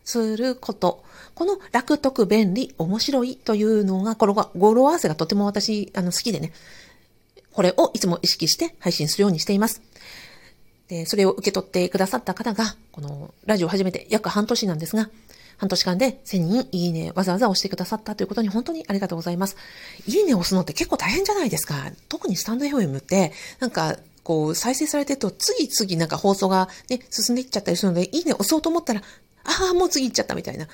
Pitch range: 180-250 Hz